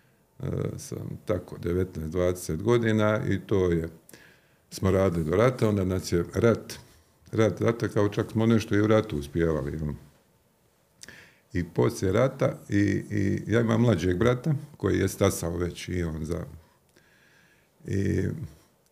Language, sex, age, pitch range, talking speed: Croatian, male, 50-69, 95-115 Hz, 135 wpm